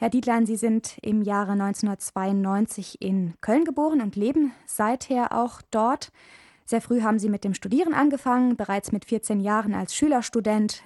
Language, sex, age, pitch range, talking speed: German, female, 20-39, 205-245 Hz, 160 wpm